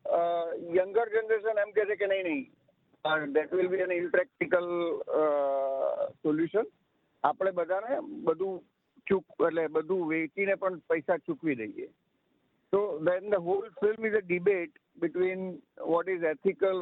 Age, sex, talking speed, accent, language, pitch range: 50-69, male, 90 wpm, native, Gujarati, 160-195 Hz